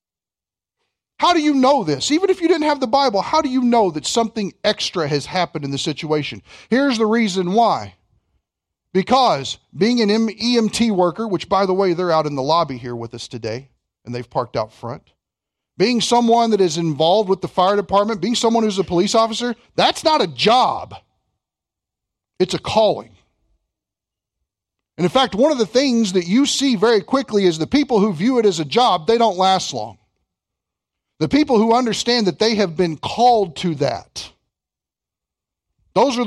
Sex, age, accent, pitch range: male, 40-59, American, 140-220 Hz